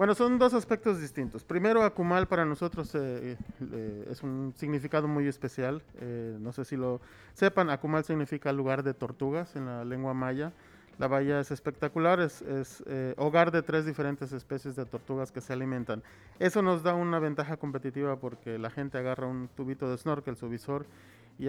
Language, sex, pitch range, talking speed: Spanish, male, 130-160 Hz, 180 wpm